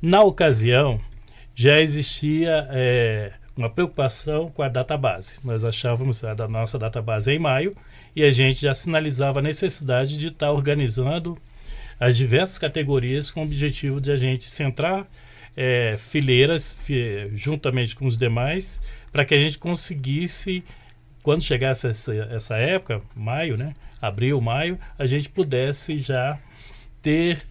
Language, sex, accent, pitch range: Portuguese, male, Brazilian, 120-155 Hz